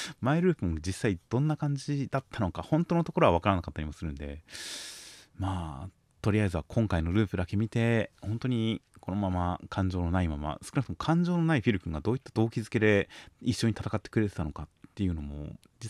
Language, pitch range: Japanese, 85-110 Hz